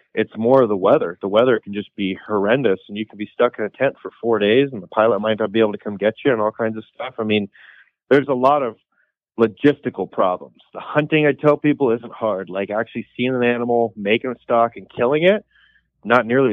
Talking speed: 240 wpm